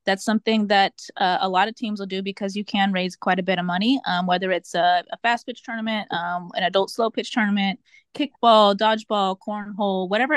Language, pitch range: English, 185-215 Hz